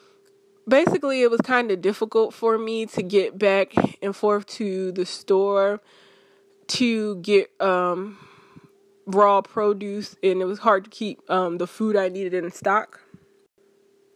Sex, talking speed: female, 145 wpm